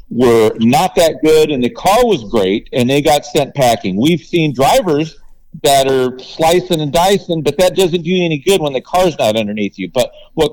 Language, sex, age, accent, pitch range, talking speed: English, male, 50-69, American, 125-170 Hz, 210 wpm